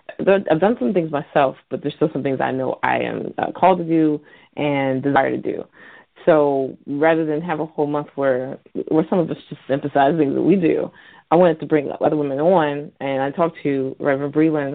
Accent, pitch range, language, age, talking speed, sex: American, 140-165 Hz, English, 30-49, 210 wpm, female